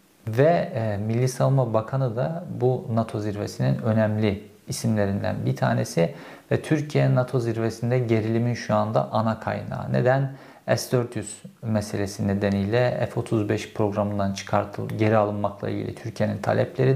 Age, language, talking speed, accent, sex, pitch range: 50-69, Turkish, 120 wpm, native, male, 105-125 Hz